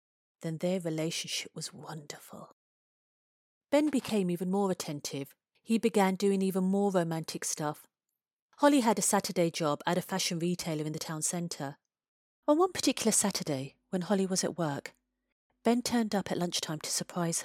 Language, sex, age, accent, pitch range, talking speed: English, female, 40-59, British, 170-220 Hz, 160 wpm